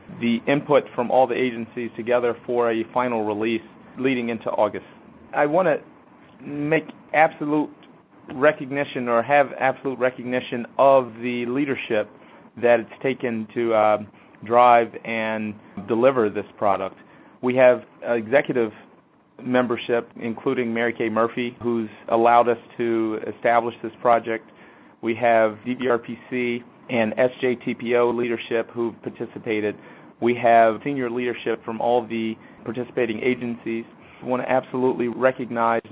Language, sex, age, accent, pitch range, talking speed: English, male, 40-59, American, 115-125 Hz, 125 wpm